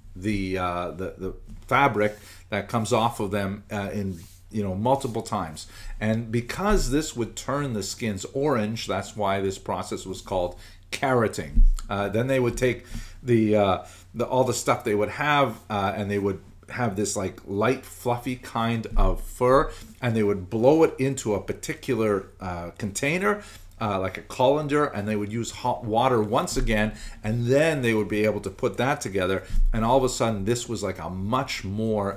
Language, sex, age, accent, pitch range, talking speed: English, male, 40-59, American, 95-120 Hz, 185 wpm